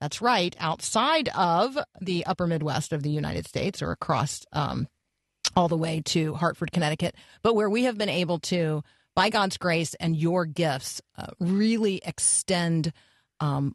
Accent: American